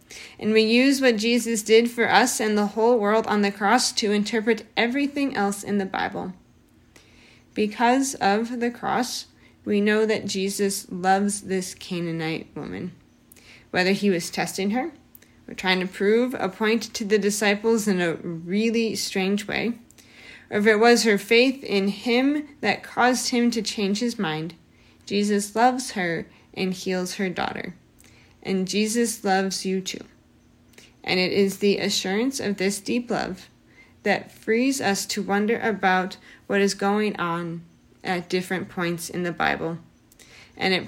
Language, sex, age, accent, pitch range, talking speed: English, female, 30-49, American, 185-225 Hz, 155 wpm